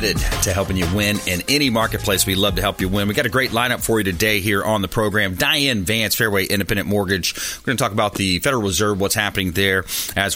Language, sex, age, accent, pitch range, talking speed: English, male, 30-49, American, 100-125 Hz, 240 wpm